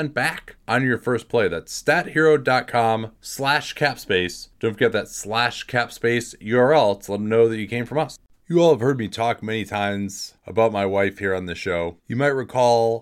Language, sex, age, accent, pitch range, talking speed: English, male, 30-49, American, 100-125 Hz, 200 wpm